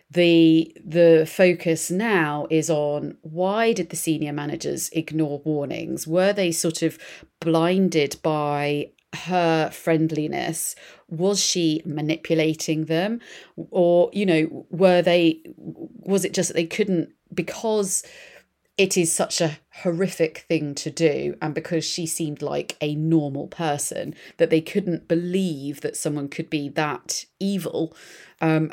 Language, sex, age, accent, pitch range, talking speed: English, female, 30-49, British, 155-180 Hz, 135 wpm